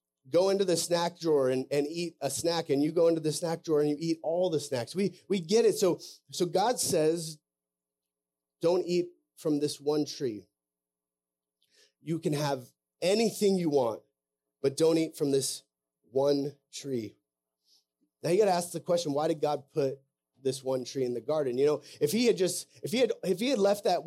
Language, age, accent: English, 30-49, American